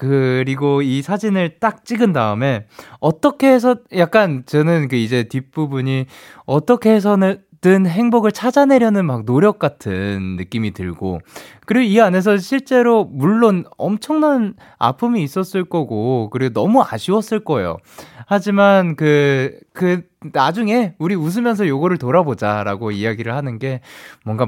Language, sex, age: Korean, male, 20-39